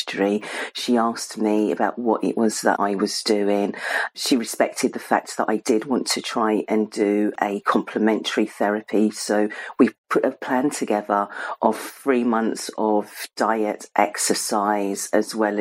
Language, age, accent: English, 50-69, British